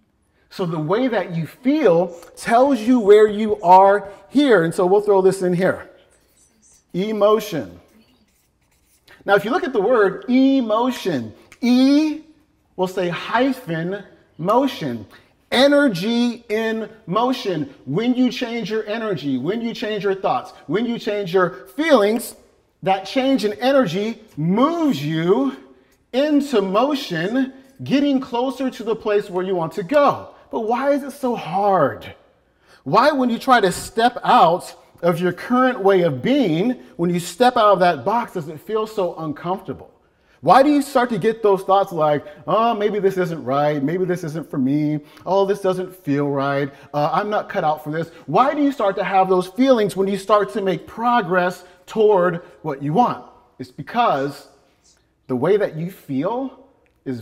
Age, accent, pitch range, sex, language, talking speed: 40-59, American, 165-240 Hz, male, English, 165 wpm